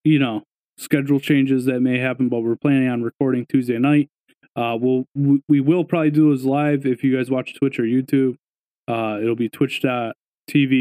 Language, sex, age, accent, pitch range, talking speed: English, male, 20-39, American, 125-150 Hz, 190 wpm